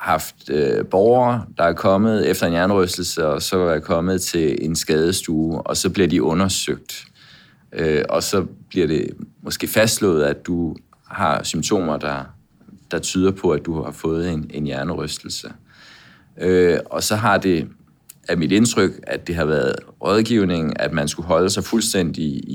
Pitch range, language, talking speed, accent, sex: 75-95 Hz, Danish, 160 wpm, native, male